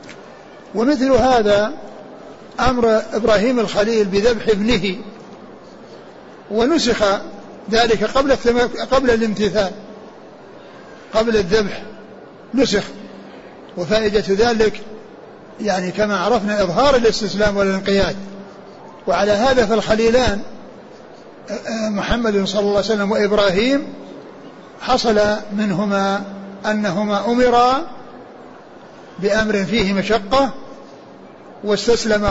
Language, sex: Arabic, male